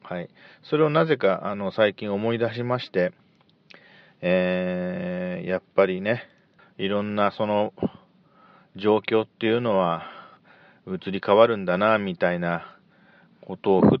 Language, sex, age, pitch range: Japanese, male, 40-59, 95-135 Hz